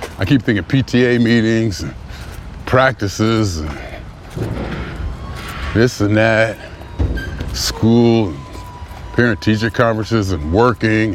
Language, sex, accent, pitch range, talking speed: English, male, American, 85-115 Hz, 90 wpm